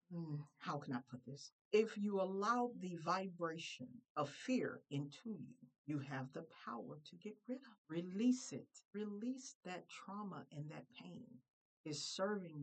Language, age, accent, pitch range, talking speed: English, 50-69, American, 140-195 Hz, 150 wpm